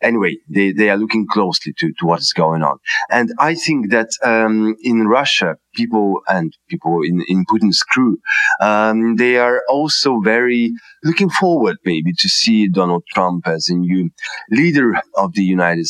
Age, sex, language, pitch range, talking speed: 30-49, male, English, 90-130 Hz, 170 wpm